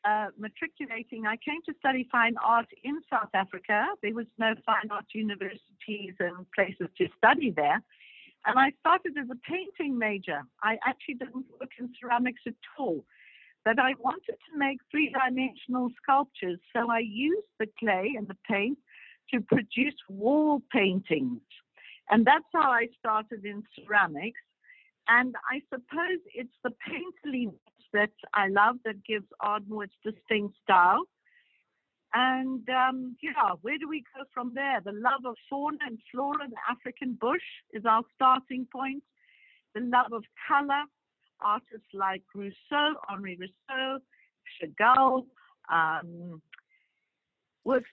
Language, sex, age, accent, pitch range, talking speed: English, female, 60-79, British, 215-280 Hz, 140 wpm